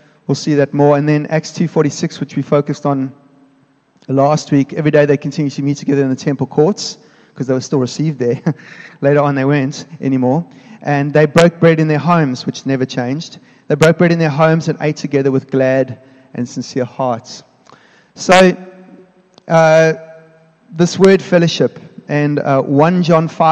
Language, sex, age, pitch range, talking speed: English, male, 30-49, 140-165 Hz, 180 wpm